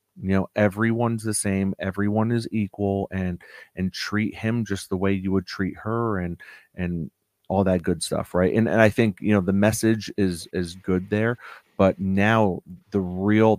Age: 30-49